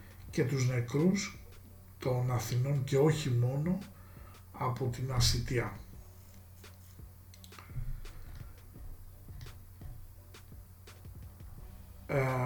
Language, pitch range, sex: Greek, 95-130 Hz, male